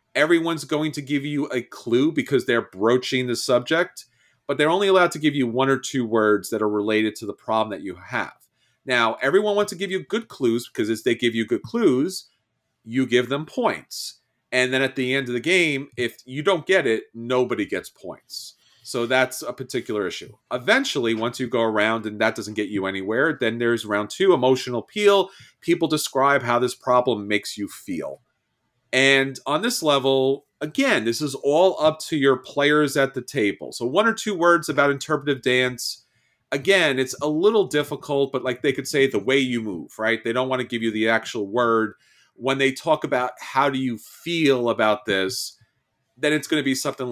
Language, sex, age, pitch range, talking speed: English, male, 30-49, 115-150 Hz, 205 wpm